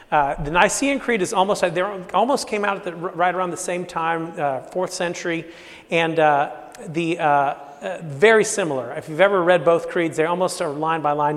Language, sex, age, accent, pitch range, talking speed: English, male, 40-59, American, 150-195 Hz, 200 wpm